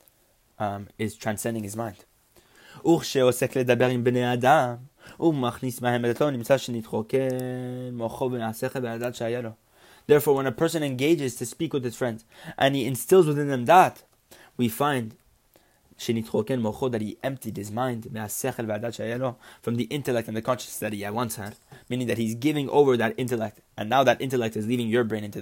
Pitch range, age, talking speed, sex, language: 110-135 Hz, 20-39, 125 wpm, male, English